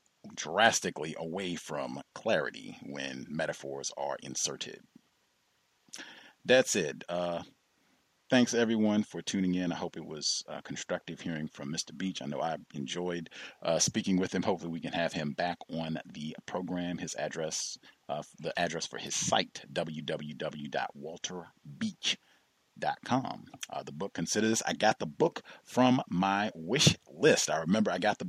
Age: 40-59